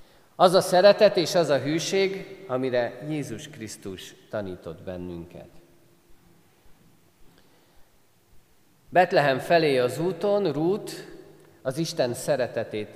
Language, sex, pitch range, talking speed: Hungarian, male, 115-165 Hz, 95 wpm